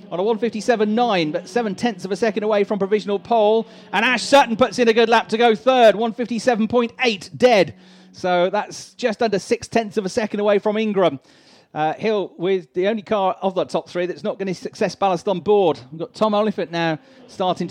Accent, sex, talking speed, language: British, male, 205 wpm, English